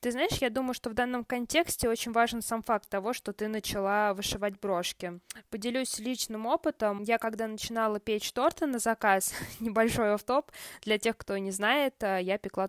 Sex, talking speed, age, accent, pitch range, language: female, 180 wpm, 20-39, native, 200-235 Hz, Russian